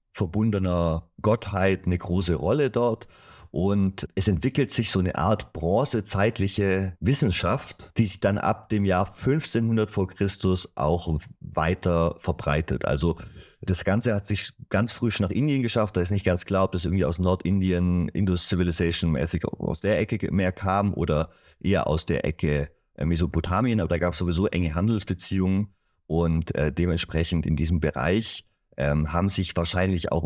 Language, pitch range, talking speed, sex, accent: German, 85-105 Hz, 155 wpm, male, German